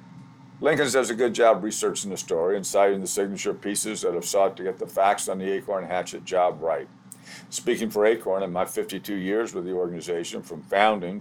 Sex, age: male, 50-69